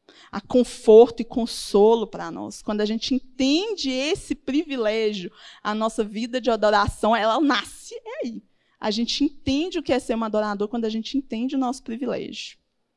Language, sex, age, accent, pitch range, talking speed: Portuguese, female, 20-39, Brazilian, 225-285 Hz, 165 wpm